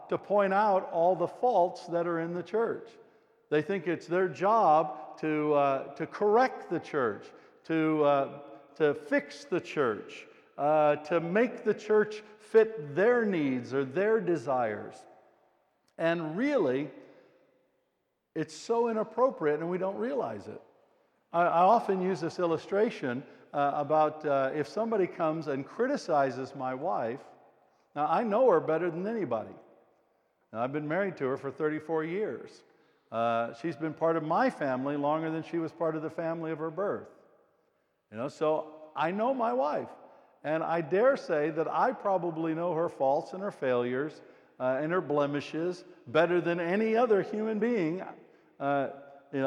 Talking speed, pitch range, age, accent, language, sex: 155 wpm, 150-205 Hz, 60-79, American, English, male